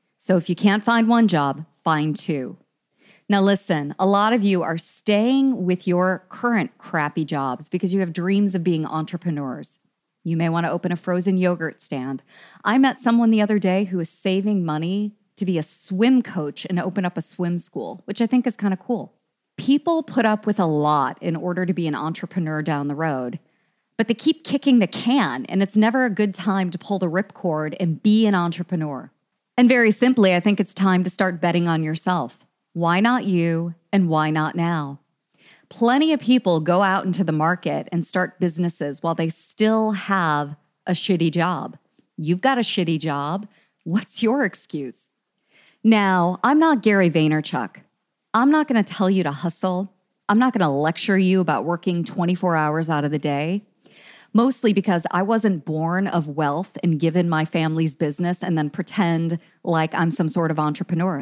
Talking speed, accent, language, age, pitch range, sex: 190 wpm, American, English, 40-59, 165-210 Hz, female